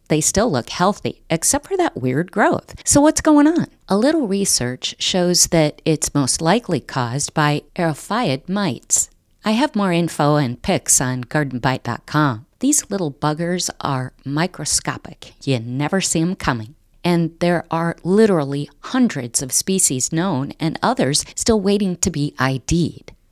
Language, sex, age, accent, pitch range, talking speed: English, female, 50-69, American, 140-185 Hz, 150 wpm